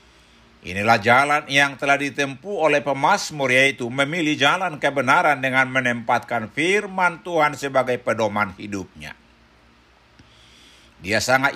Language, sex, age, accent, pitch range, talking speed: Indonesian, male, 60-79, native, 110-140 Hz, 105 wpm